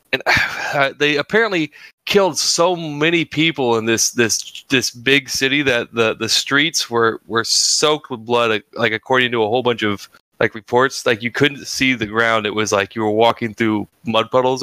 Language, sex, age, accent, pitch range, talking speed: English, male, 20-39, American, 110-135 Hz, 195 wpm